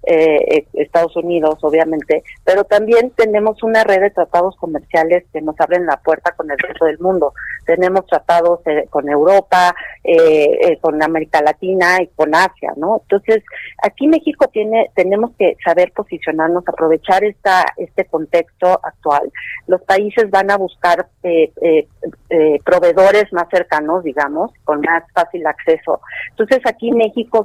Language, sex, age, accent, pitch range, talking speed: Spanish, female, 40-59, Mexican, 165-220 Hz, 150 wpm